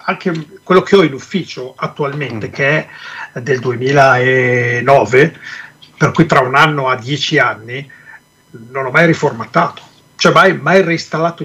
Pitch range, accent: 130-180 Hz, native